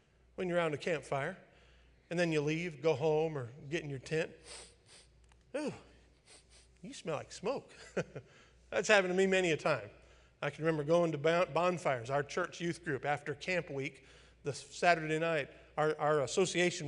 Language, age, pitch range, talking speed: English, 50-69, 140-170 Hz, 165 wpm